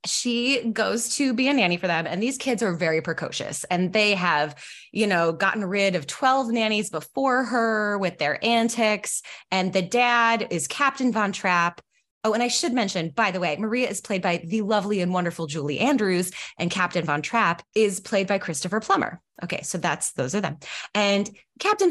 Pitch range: 180-250 Hz